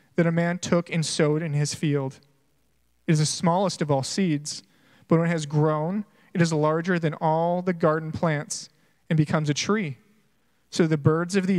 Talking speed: 195 wpm